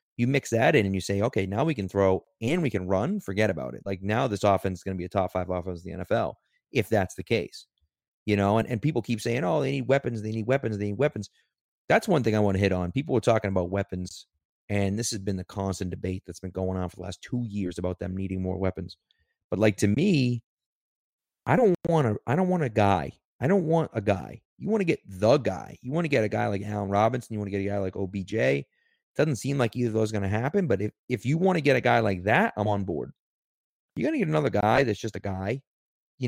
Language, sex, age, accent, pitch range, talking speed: English, male, 30-49, American, 100-135 Hz, 265 wpm